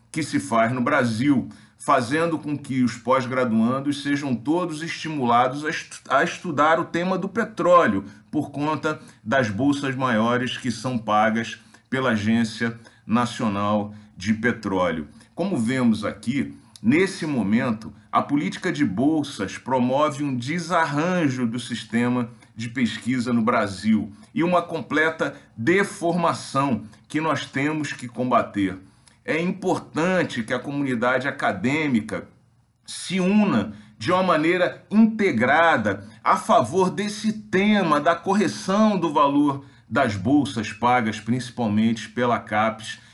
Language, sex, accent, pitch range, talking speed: Portuguese, male, Brazilian, 115-165 Hz, 120 wpm